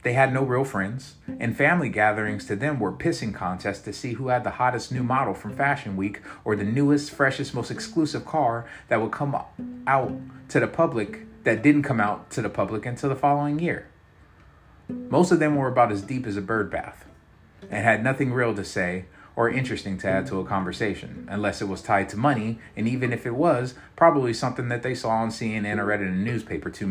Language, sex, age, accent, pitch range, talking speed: English, male, 30-49, American, 100-130 Hz, 215 wpm